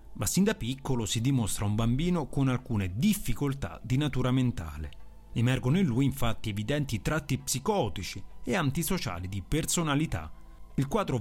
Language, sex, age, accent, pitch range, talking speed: Italian, male, 40-59, native, 110-150 Hz, 145 wpm